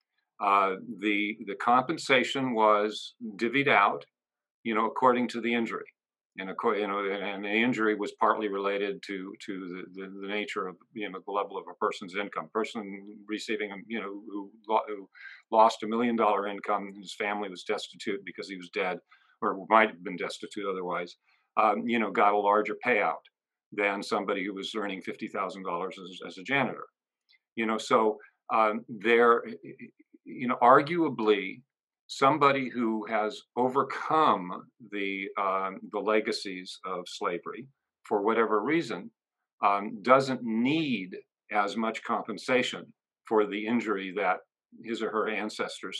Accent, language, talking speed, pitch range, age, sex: American, English, 155 wpm, 100-115 Hz, 50-69, male